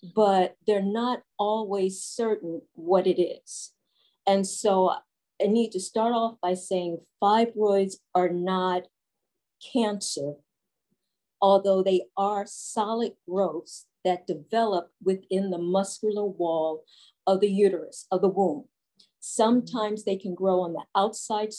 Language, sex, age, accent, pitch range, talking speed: English, female, 40-59, American, 185-215 Hz, 125 wpm